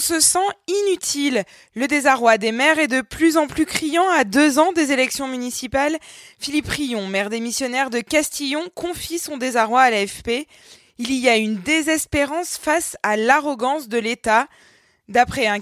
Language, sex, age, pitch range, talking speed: French, female, 20-39, 225-310 Hz, 165 wpm